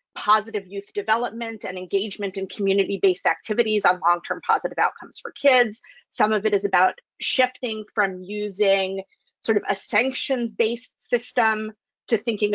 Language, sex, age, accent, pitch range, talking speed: English, female, 30-49, American, 200-275 Hz, 155 wpm